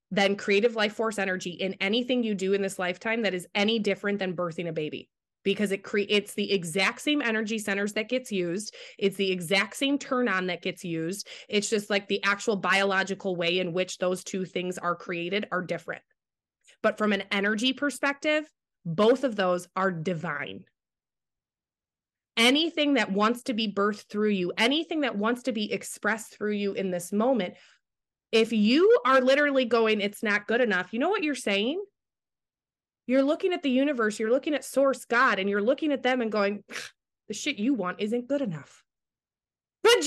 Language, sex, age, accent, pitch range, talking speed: English, female, 20-39, American, 195-290 Hz, 185 wpm